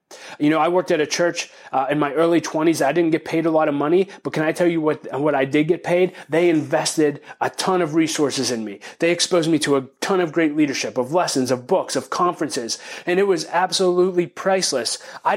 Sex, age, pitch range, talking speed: male, 30-49, 150-175 Hz, 235 wpm